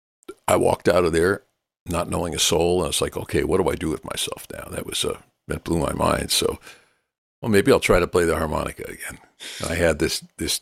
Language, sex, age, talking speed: English, male, 50-69, 245 wpm